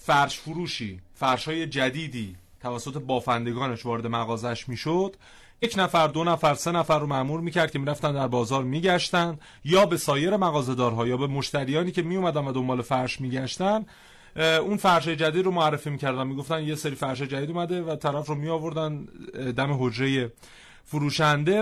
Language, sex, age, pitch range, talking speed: Persian, male, 30-49, 125-155 Hz, 165 wpm